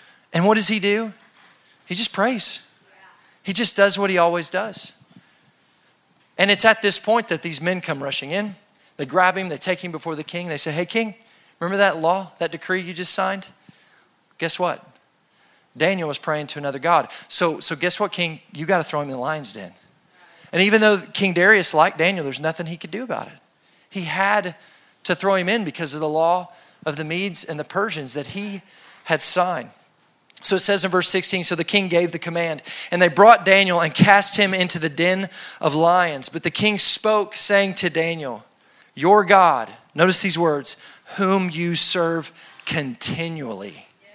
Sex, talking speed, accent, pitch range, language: male, 195 wpm, American, 160-195 Hz, English